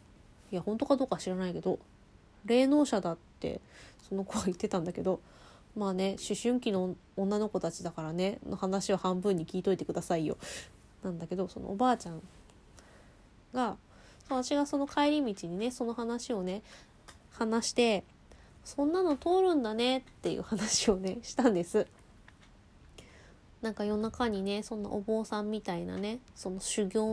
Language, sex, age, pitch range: Japanese, female, 20-39, 180-225 Hz